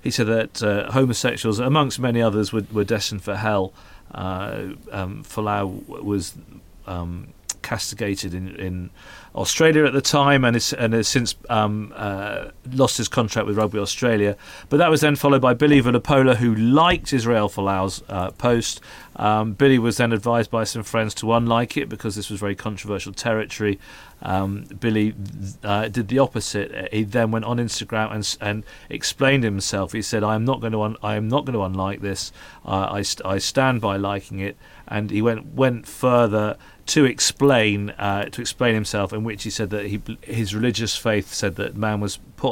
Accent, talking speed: British, 185 wpm